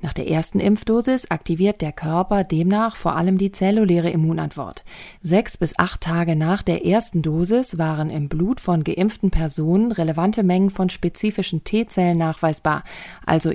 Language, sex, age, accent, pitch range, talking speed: German, female, 30-49, German, 165-200 Hz, 150 wpm